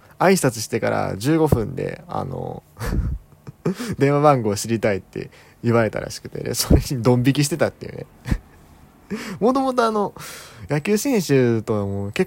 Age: 20-39